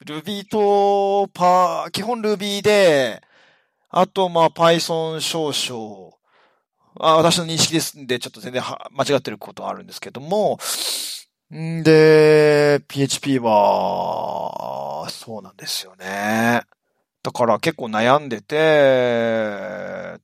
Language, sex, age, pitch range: Japanese, male, 40-59, 135-195 Hz